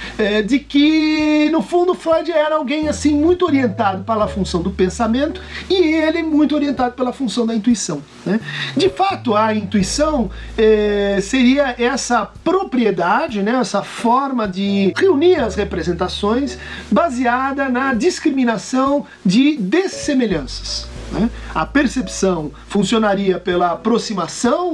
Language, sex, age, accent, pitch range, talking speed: Portuguese, male, 50-69, Brazilian, 210-305 Hz, 120 wpm